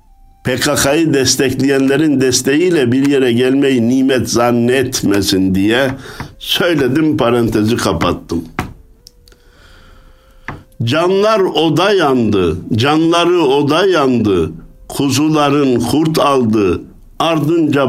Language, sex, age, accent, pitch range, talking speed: Turkish, male, 60-79, native, 105-140 Hz, 75 wpm